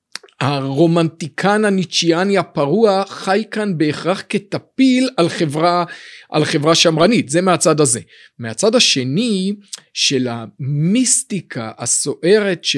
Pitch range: 150-210 Hz